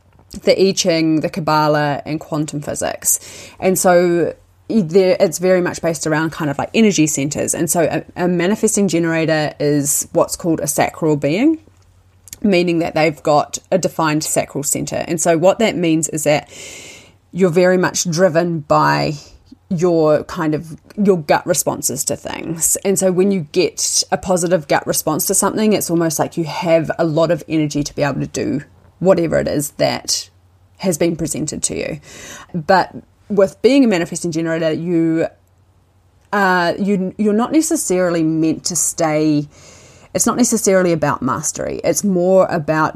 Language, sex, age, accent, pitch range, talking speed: English, female, 30-49, Australian, 150-185 Hz, 165 wpm